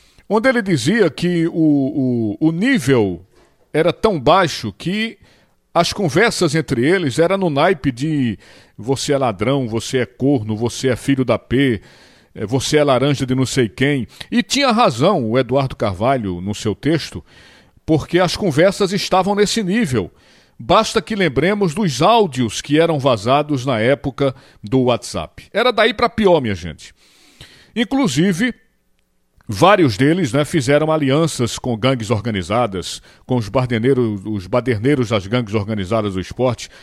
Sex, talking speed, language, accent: male, 145 wpm, Portuguese, Brazilian